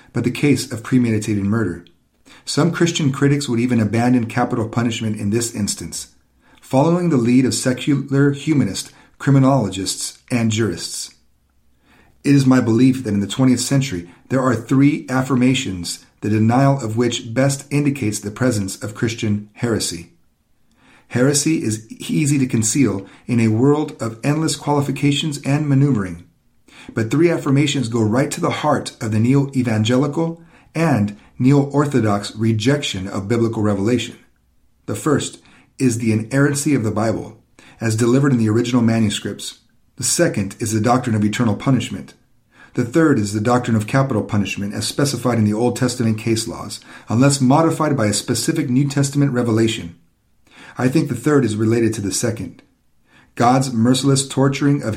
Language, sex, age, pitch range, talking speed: English, male, 40-59, 110-135 Hz, 155 wpm